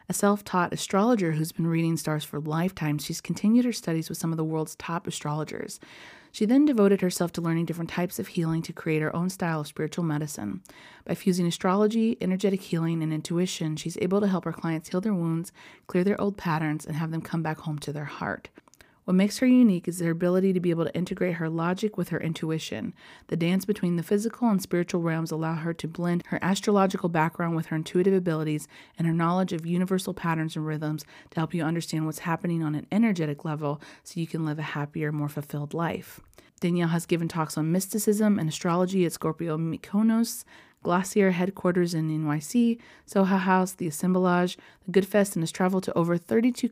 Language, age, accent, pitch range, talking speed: English, 30-49, American, 160-190 Hz, 205 wpm